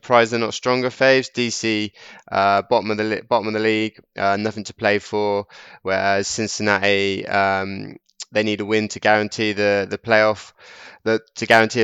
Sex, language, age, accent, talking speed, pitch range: male, English, 20-39, British, 170 wpm, 100-110 Hz